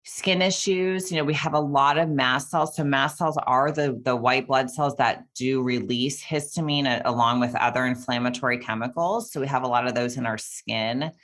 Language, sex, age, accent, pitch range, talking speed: English, female, 30-49, American, 120-145 Hz, 210 wpm